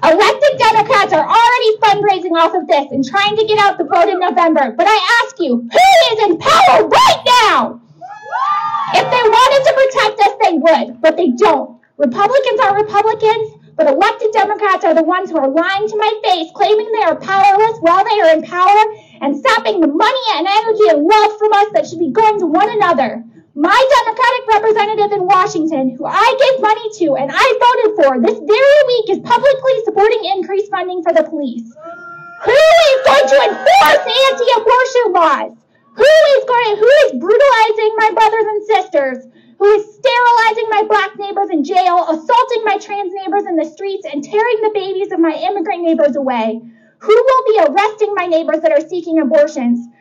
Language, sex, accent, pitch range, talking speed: English, female, American, 320-435 Hz, 185 wpm